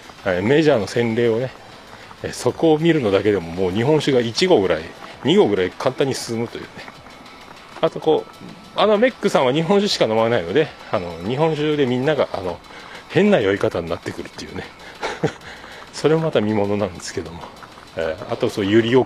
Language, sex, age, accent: Japanese, male, 40-59, native